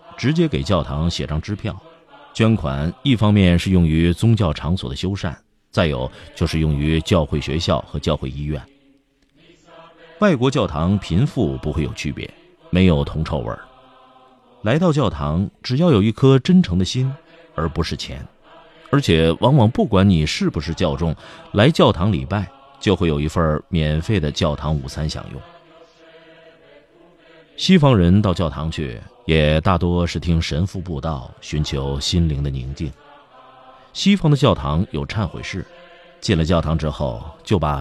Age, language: 30-49, Chinese